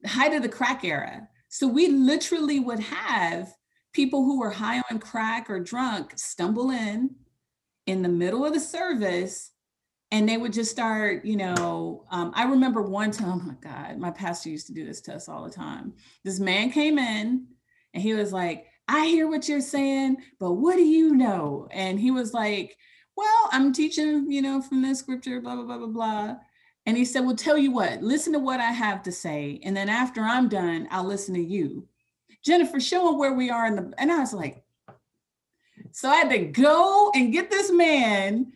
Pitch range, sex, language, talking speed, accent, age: 195-280 Hz, female, English, 205 wpm, American, 40-59